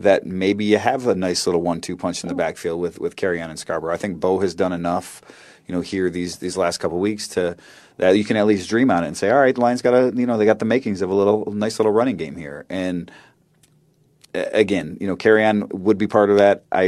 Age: 30-49